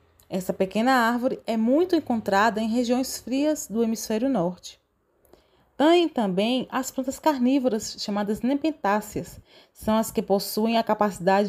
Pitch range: 200-260 Hz